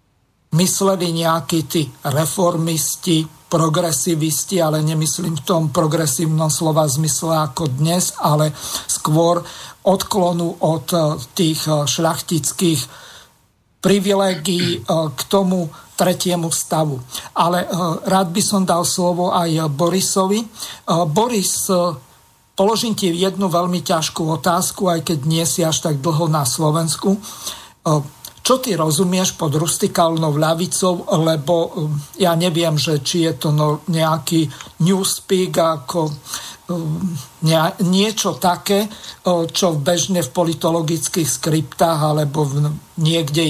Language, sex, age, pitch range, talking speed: Slovak, male, 50-69, 155-180 Hz, 105 wpm